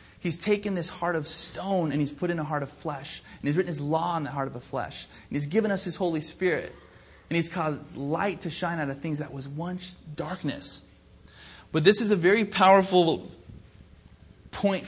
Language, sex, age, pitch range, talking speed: English, male, 20-39, 145-175 Hz, 210 wpm